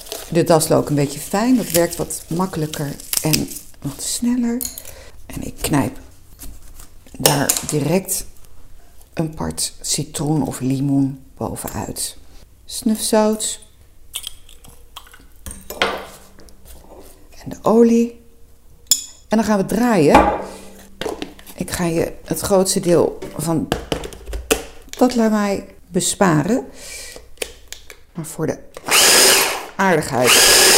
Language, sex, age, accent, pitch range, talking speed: Dutch, female, 50-69, Dutch, 140-225 Hz, 90 wpm